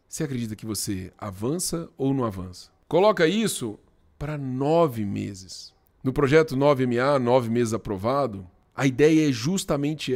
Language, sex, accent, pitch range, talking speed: Portuguese, male, Brazilian, 105-145 Hz, 135 wpm